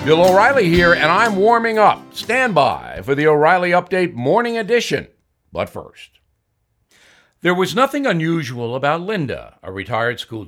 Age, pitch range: 60-79, 120-185 Hz